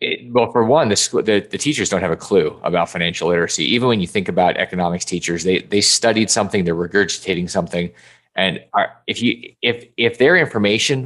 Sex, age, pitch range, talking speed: male, 30-49, 90-110 Hz, 205 wpm